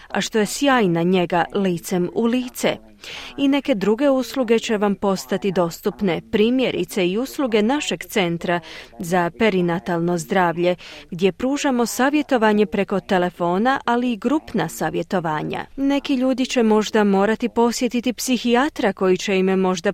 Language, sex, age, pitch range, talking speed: Croatian, female, 30-49, 190-255 Hz, 130 wpm